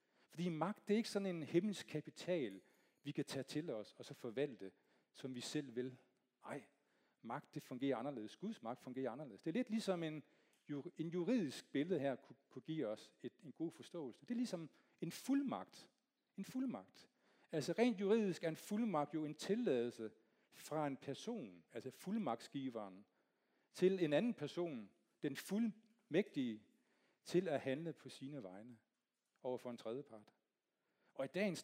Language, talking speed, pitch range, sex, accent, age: Danish, 160 wpm, 130-175 Hz, male, native, 40-59